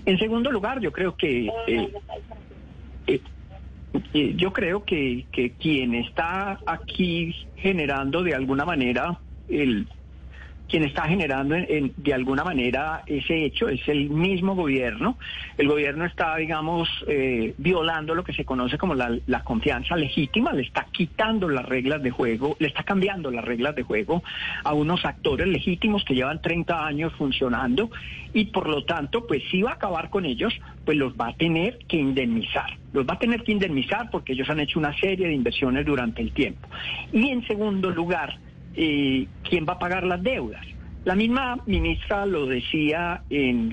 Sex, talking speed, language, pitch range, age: male, 165 wpm, Spanish, 130-190 Hz, 50-69